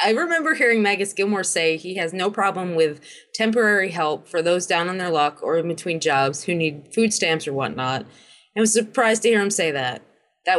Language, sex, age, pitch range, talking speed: English, female, 20-39, 165-205 Hz, 215 wpm